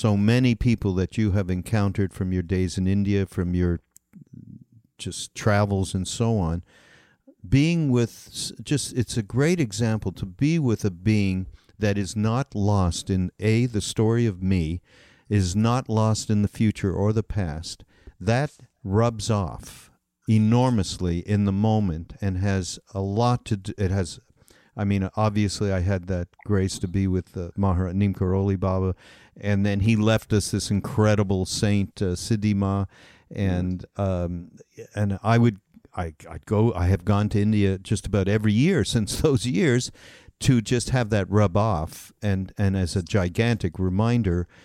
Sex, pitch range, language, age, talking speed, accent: male, 95-110 Hz, English, 50-69, 160 wpm, American